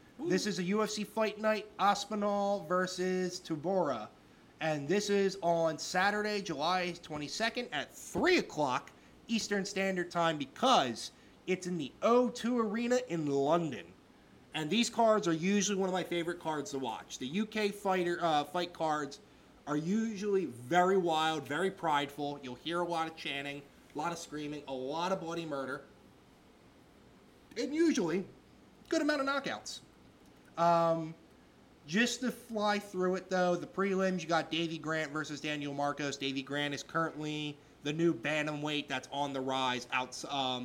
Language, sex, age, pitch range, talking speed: English, male, 30-49, 145-190 Hz, 150 wpm